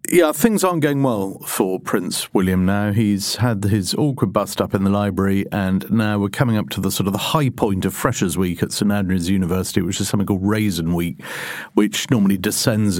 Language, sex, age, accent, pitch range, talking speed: English, male, 50-69, British, 95-125 Hz, 210 wpm